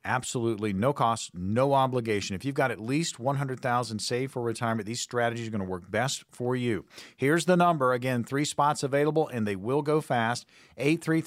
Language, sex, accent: English, male, American